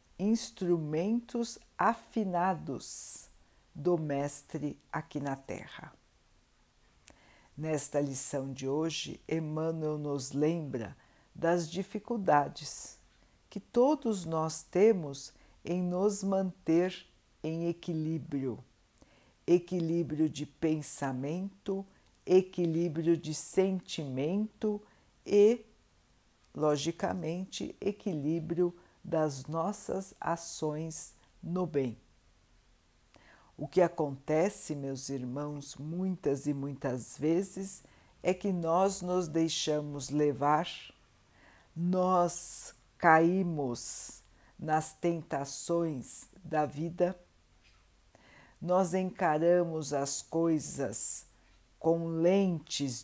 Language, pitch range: Portuguese, 140-180 Hz